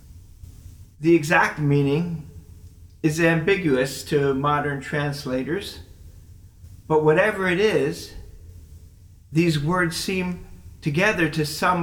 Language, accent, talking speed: English, American, 90 wpm